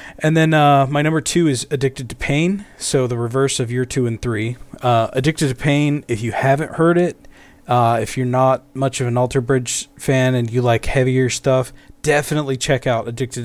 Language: English